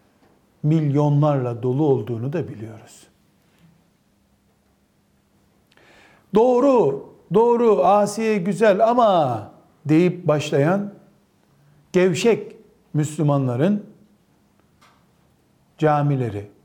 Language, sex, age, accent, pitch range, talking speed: Turkish, male, 60-79, native, 130-190 Hz, 55 wpm